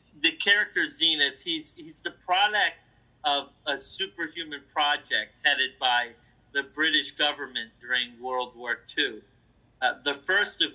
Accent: American